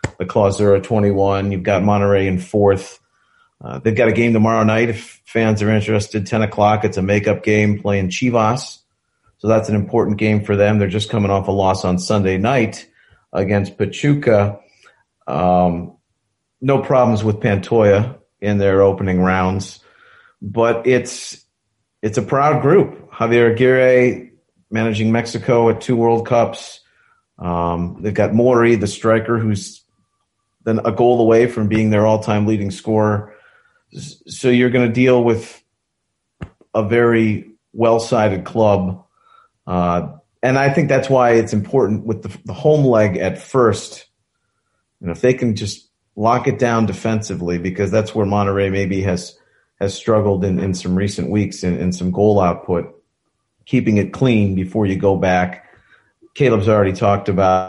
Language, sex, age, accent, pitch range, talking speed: English, male, 40-59, American, 100-115 Hz, 155 wpm